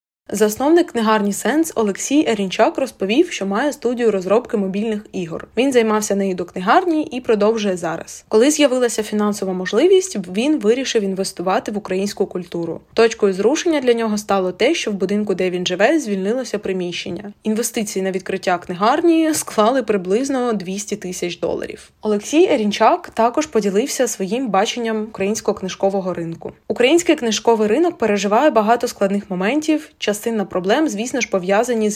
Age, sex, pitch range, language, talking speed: 20-39, female, 190-240 Hz, Ukrainian, 140 wpm